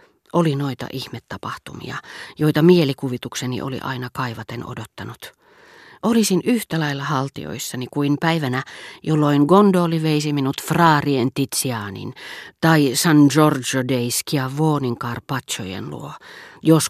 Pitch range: 130-165 Hz